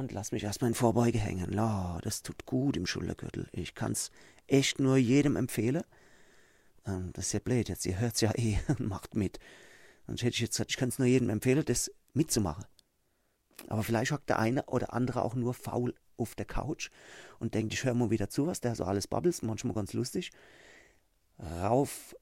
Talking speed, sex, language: 190 wpm, male, German